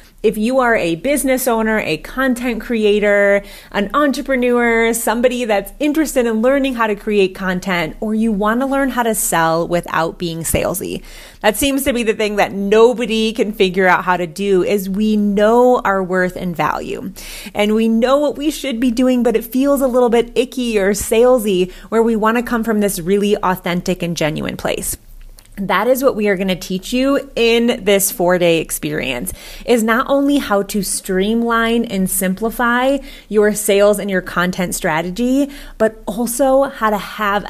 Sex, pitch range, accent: female, 190-240 Hz, American